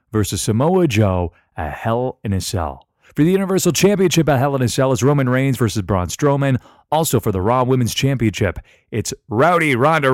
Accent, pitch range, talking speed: American, 105-140 Hz, 190 wpm